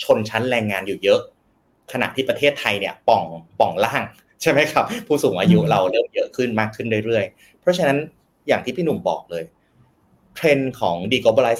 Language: Thai